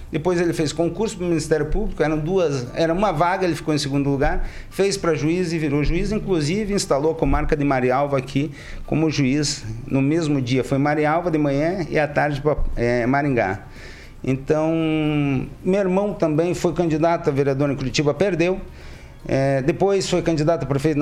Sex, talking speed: male, 170 wpm